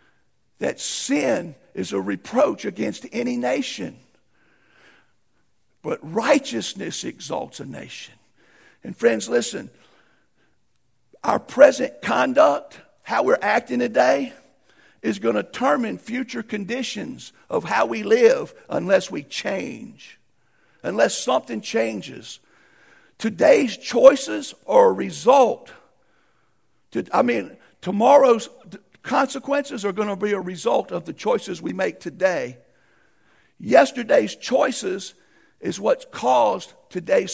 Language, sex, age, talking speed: English, male, 50-69, 105 wpm